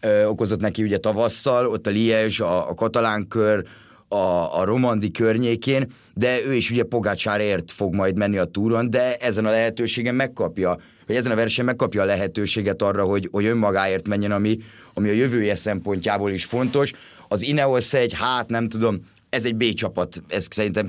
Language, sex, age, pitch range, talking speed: Hungarian, male, 30-49, 100-115 Hz, 170 wpm